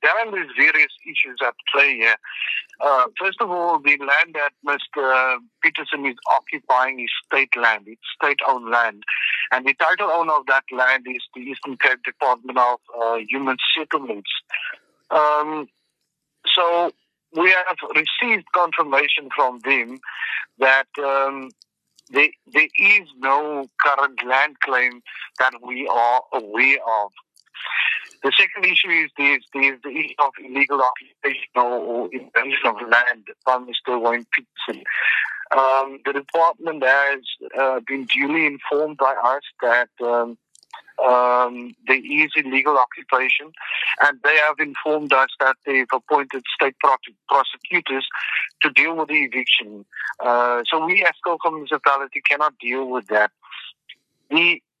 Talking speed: 130 wpm